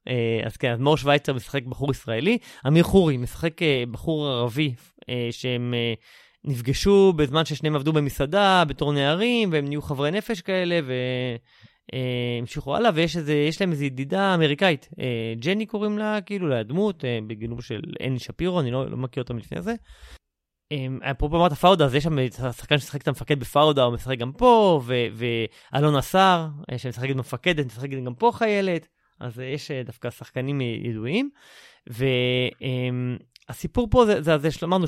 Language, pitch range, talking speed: Hebrew, 125-165 Hz, 145 wpm